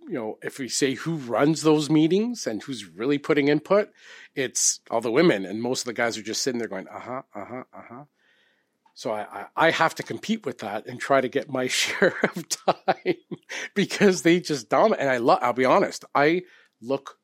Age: 40-59